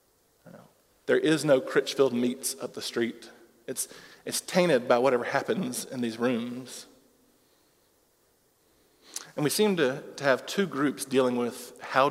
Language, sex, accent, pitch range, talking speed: English, male, American, 130-175 Hz, 145 wpm